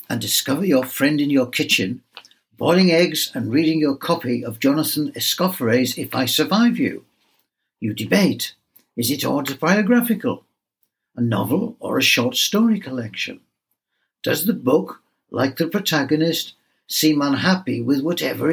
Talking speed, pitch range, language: 135 wpm, 135-170 Hz, English